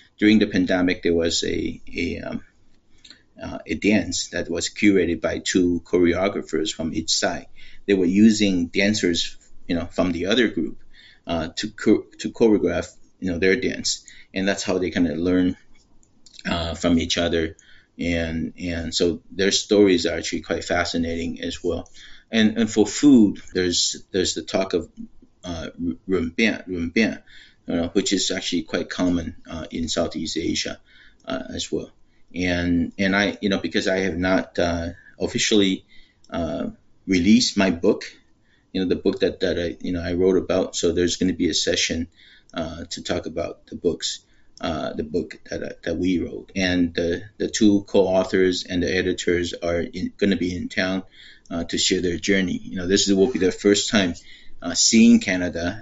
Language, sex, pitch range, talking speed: English, male, 85-100 Hz, 175 wpm